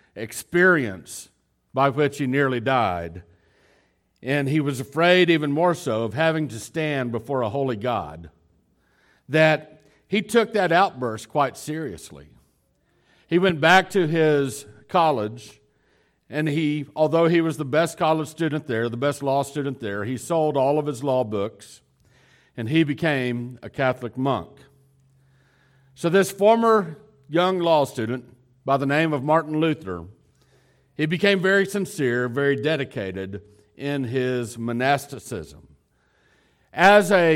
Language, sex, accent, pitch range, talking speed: English, male, American, 120-155 Hz, 135 wpm